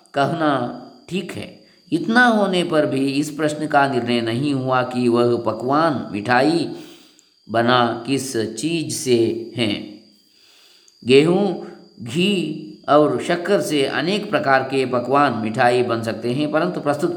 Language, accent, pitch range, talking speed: Kannada, native, 125-175 Hz, 130 wpm